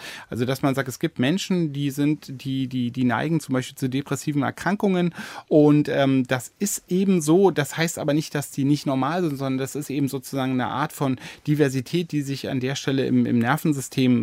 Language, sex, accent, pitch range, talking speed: German, male, German, 125-150 Hz, 210 wpm